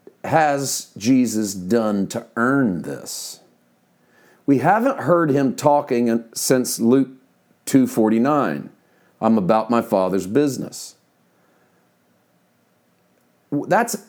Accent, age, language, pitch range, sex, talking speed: American, 40-59, English, 105-150 Hz, male, 85 wpm